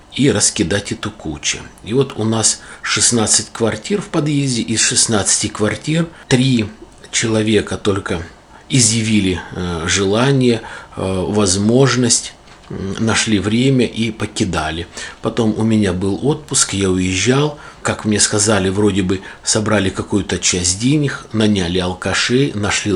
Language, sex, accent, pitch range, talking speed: Russian, male, native, 100-120 Hz, 115 wpm